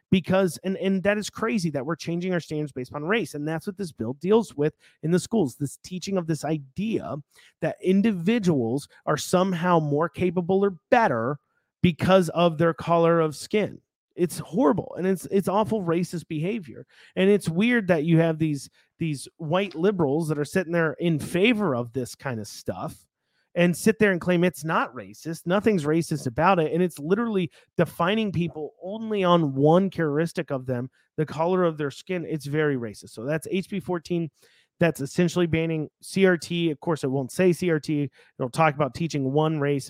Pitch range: 145-180 Hz